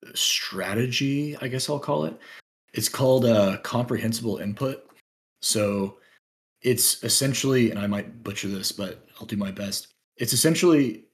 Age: 30-49